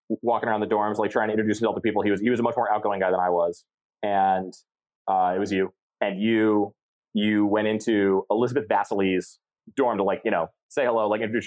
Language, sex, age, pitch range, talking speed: English, male, 20-39, 95-110 Hz, 230 wpm